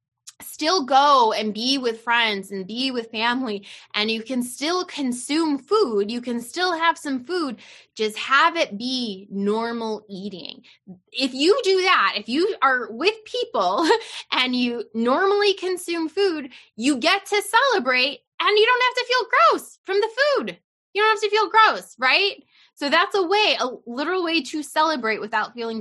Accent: American